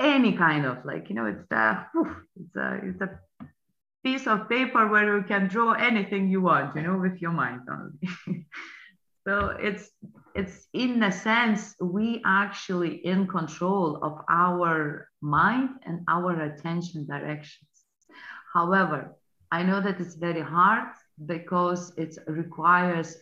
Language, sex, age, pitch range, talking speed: English, female, 30-49, 150-195 Hz, 135 wpm